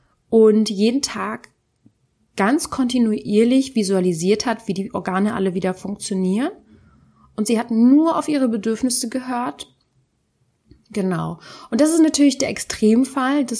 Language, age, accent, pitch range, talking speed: German, 30-49, German, 195-255 Hz, 130 wpm